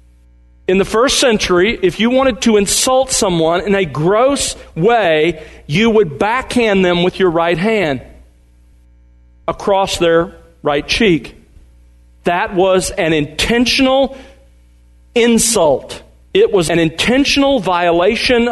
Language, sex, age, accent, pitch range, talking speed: English, male, 40-59, American, 130-225 Hz, 115 wpm